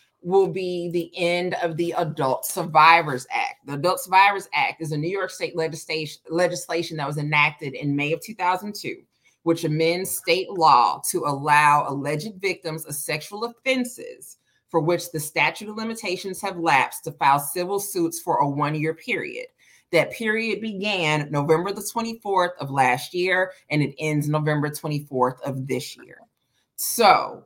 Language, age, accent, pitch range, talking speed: English, 30-49, American, 150-185 Hz, 155 wpm